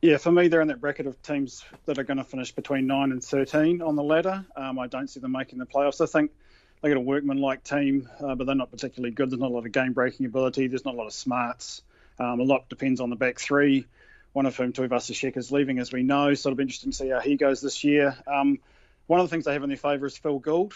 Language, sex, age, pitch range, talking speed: English, male, 30-49, 130-145 Hz, 280 wpm